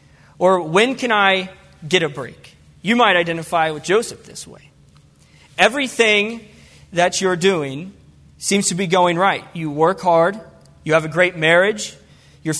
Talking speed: 150 wpm